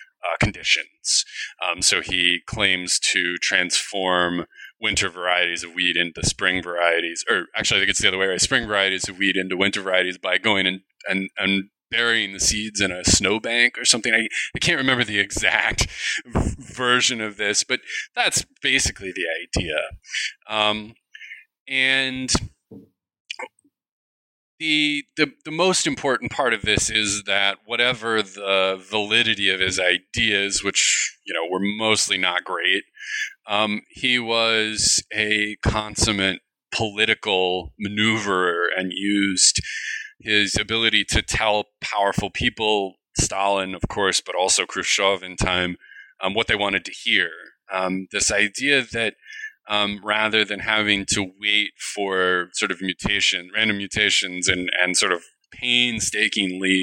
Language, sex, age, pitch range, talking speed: English, male, 30-49, 95-110 Hz, 140 wpm